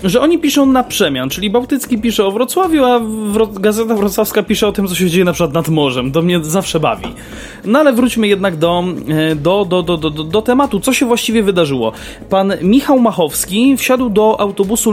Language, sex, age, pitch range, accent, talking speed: Polish, male, 20-39, 175-245 Hz, native, 195 wpm